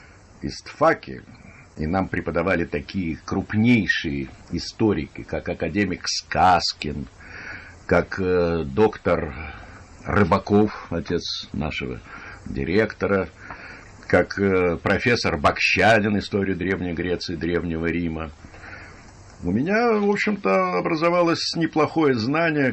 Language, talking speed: Russian, 85 wpm